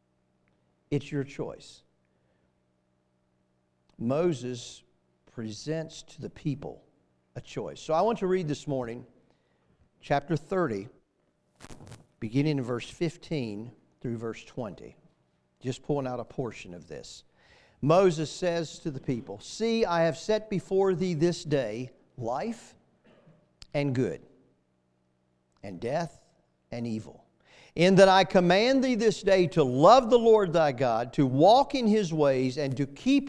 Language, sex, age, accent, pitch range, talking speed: English, male, 50-69, American, 115-180 Hz, 135 wpm